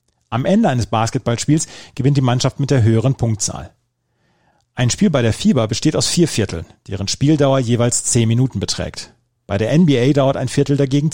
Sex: male